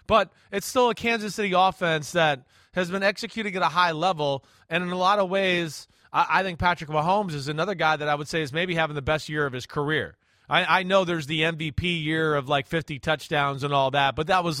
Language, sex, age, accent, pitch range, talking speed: English, male, 30-49, American, 160-210 Hz, 240 wpm